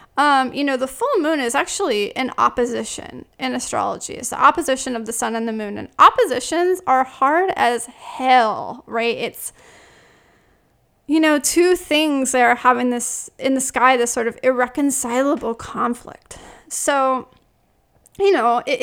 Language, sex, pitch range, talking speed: English, female, 245-345 Hz, 155 wpm